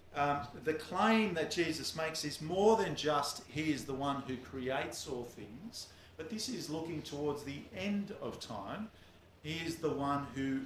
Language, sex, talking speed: English, male, 180 wpm